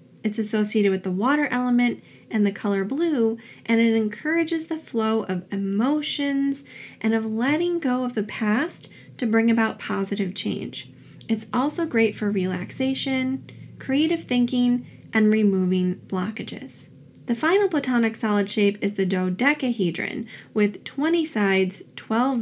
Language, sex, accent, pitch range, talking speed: English, female, American, 200-275 Hz, 135 wpm